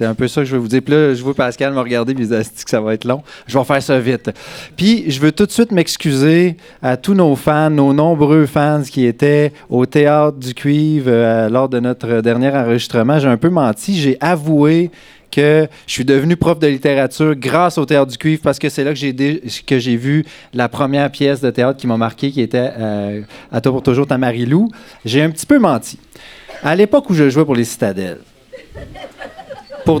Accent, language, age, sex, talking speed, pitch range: Canadian, French, 30-49, male, 225 wpm, 125-155 Hz